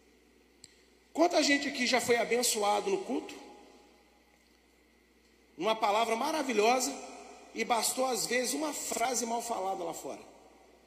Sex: male